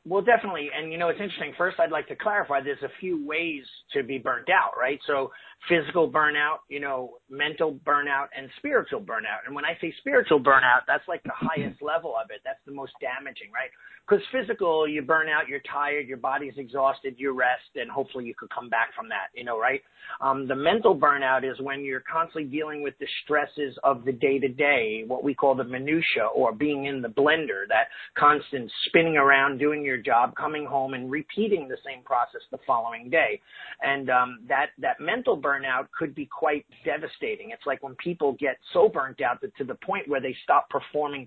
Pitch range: 135-165 Hz